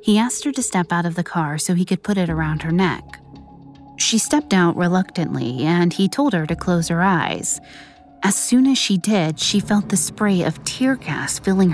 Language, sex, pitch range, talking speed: English, female, 140-200 Hz, 215 wpm